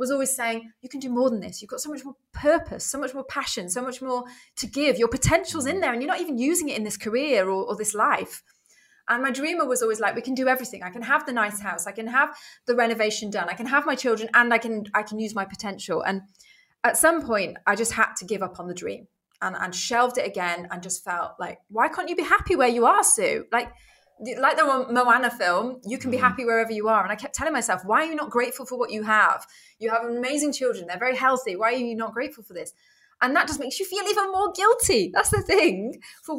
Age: 20-39